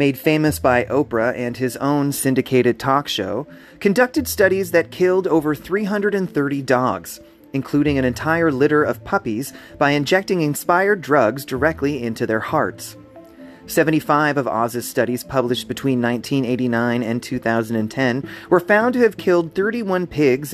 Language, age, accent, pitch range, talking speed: English, 30-49, American, 125-165 Hz, 135 wpm